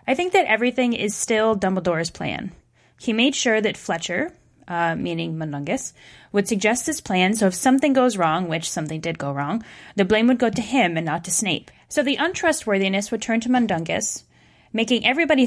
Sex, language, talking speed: female, English, 190 wpm